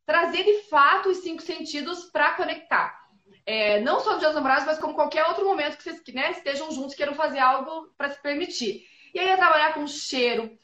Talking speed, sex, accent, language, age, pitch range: 210 wpm, female, Brazilian, Portuguese, 20-39, 255-350 Hz